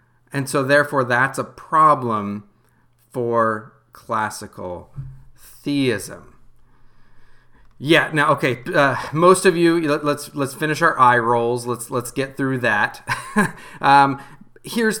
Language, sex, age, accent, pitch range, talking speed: English, male, 40-59, American, 120-150 Hz, 120 wpm